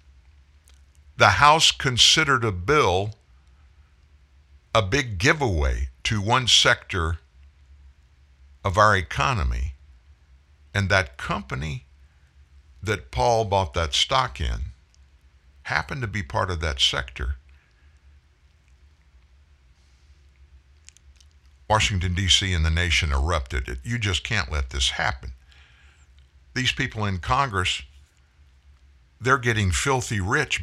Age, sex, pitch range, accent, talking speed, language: 60-79, male, 70-110 Hz, American, 100 wpm, English